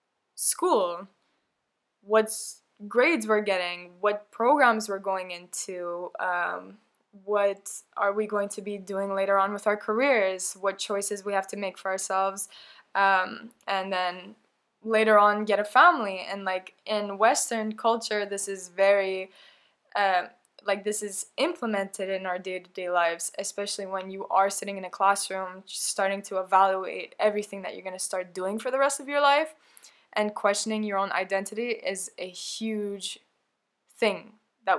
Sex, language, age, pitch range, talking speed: female, English, 10-29, 190-215 Hz, 155 wpm